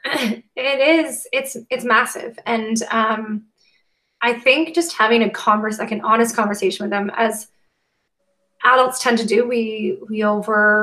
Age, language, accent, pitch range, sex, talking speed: 20-39, English, American, 210-250 Hz, female, 150 wpm